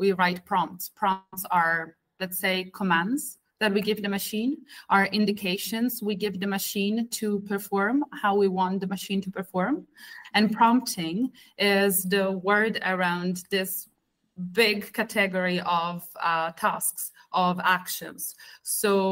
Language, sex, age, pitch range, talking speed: English, female, 30-49, 175-205 Hz, 135 wpm